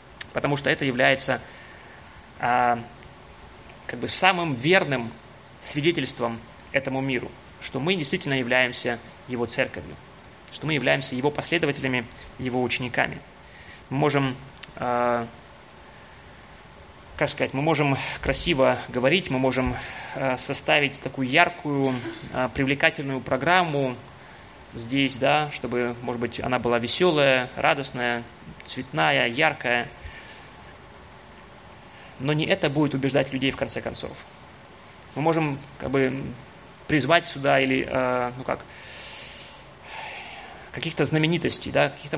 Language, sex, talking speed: Russian, male, 100 wpm